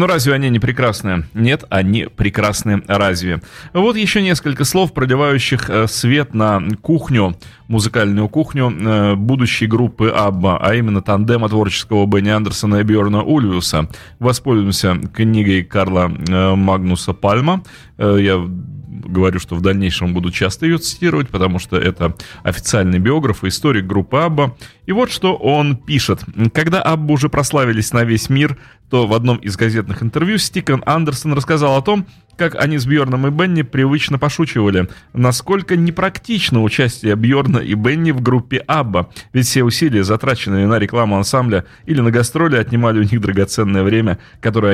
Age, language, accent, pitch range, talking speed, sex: 30-49, Russian, native, 100-145 Hz, 150 wpm, male